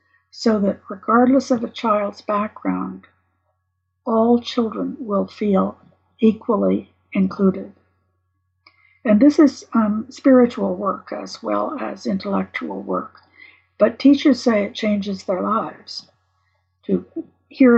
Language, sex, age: English, female, 60-79